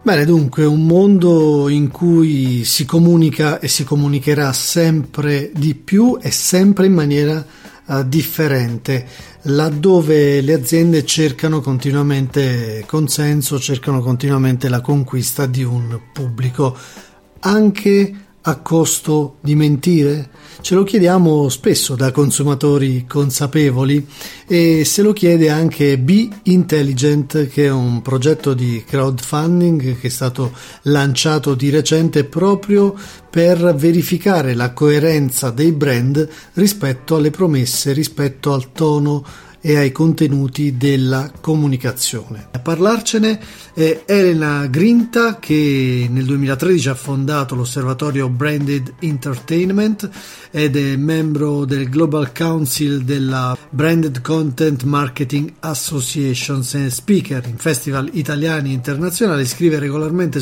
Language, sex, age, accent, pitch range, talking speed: Italian, male, 40-59, native, 135-165 Hz, 115 wpm